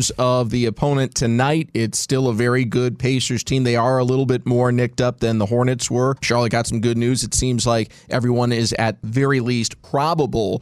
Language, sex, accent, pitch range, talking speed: English, male, American, 115-135 Hz, 210 wpm